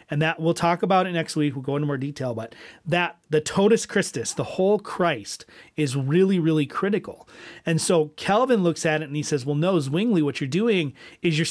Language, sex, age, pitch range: English, male, 40-59, 135-180 Hz